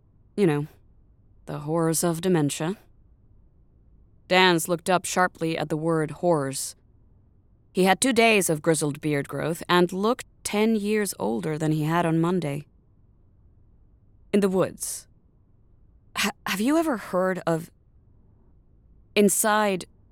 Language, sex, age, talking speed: English, female, 20-39, 125 wpm